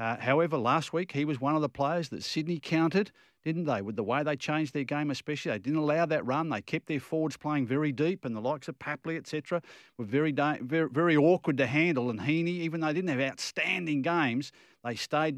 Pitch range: 115-155 Hz